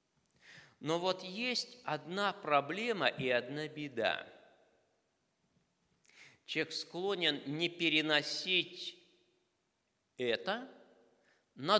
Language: Russian